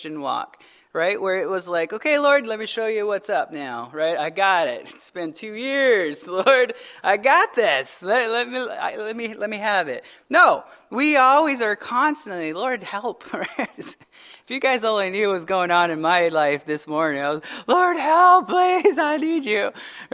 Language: English